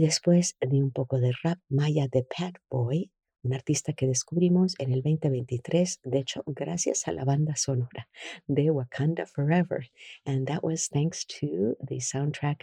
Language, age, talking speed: English, 50-69, 160 wpm